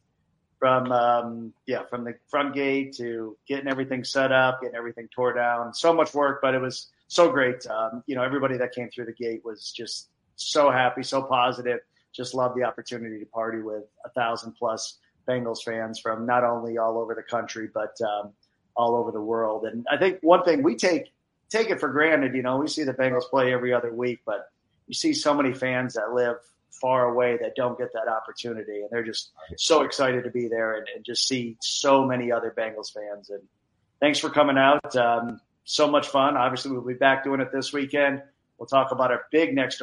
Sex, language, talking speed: male, English, 210 wpm